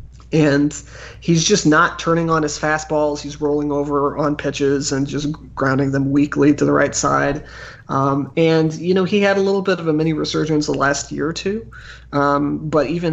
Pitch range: 140-155 Hz